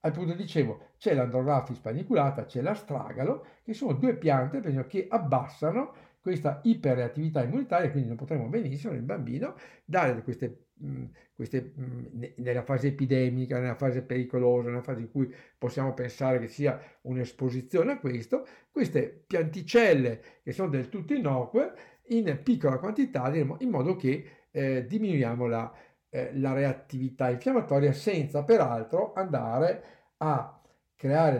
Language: Italian